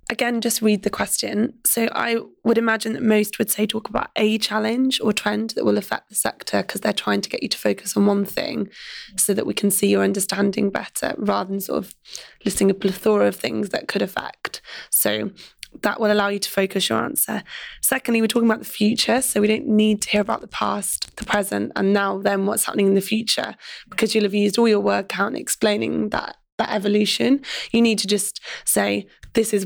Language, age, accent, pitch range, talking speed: English, 20-39, British, 200-220 Hz, 220 wpm